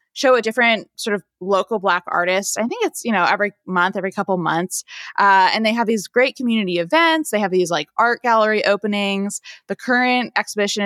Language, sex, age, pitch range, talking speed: English, female, 20-39, 180-230 Hz, 200 wpm